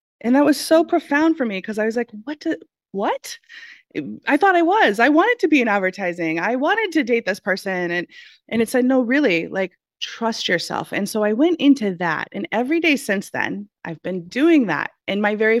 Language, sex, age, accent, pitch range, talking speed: English, female, 20-39, American, 175-240 Hz, 215 wpm